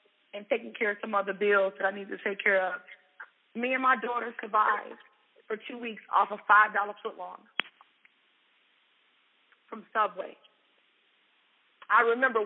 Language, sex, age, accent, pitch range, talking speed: English, female, 30-49, American, 215-280 Hz, 150 wpm